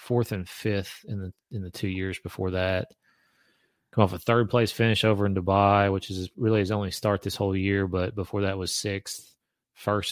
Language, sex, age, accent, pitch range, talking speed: English, male, 30-49, American, 95-110 Hz, 210 wpm